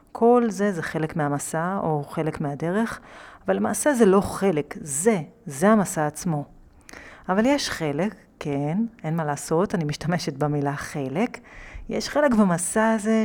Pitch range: 155-205 Hz